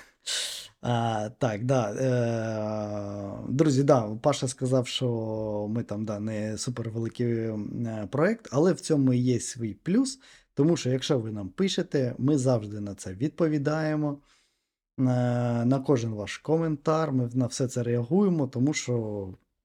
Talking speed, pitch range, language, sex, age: 130 wpm, 115-150 Hz, Ukrainian, male, 20-39